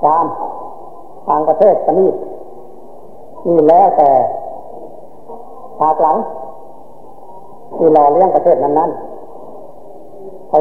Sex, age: female, 60-79